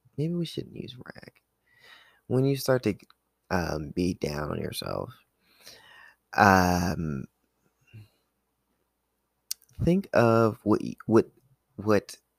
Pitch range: 85-125 Hz